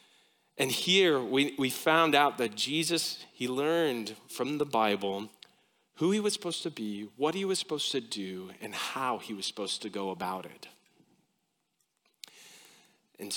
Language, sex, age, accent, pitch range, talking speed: English, male, 40-59, American, 140-195 Hz, 155 wpm